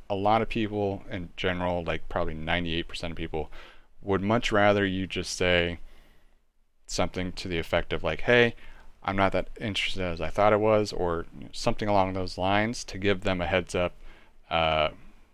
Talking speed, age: 175 wpm, 30-49